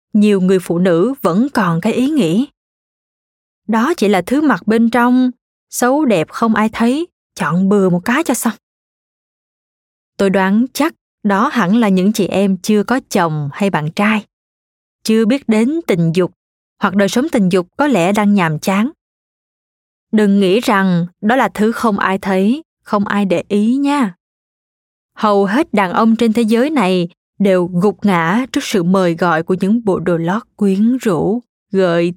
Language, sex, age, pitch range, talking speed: Vietnamese, female, 20-39, 190-235 Hz, 175 wpm